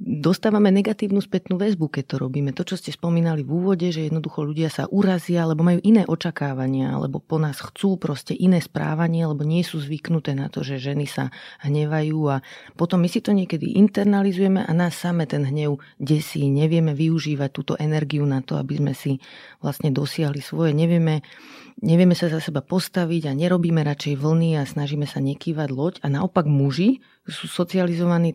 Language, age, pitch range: Slovak, 30-49, 150-180 Hz